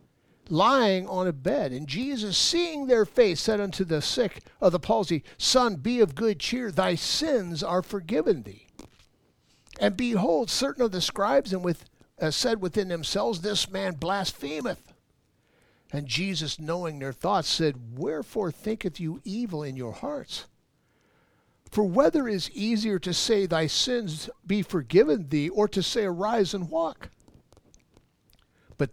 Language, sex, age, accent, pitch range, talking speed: English, male, 50-69, American, 155-210 Hz, 145 wpm